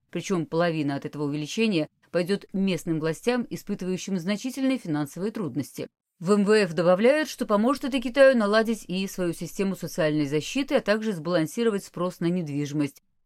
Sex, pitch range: female, 160-215 Hz